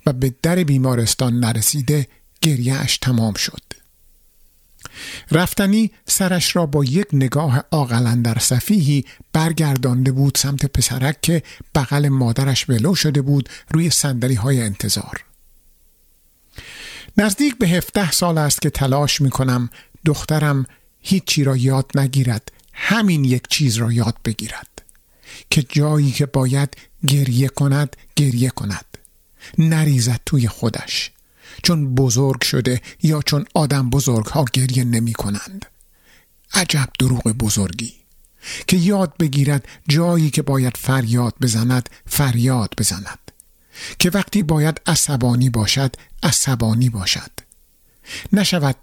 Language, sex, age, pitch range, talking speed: Persian, male, 50-69, 120-155 Hz, 110 wpm